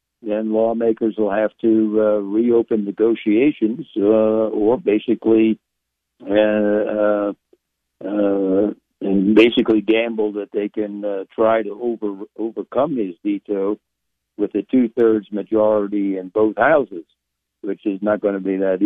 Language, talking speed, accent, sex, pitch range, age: English, 125 wpm, American, male, 95-110 Hz, 60-79